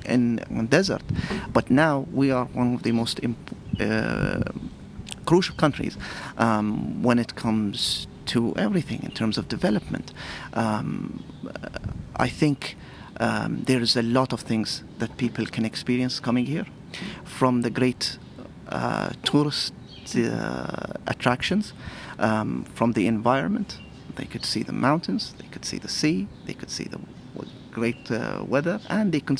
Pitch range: 115-145 Hz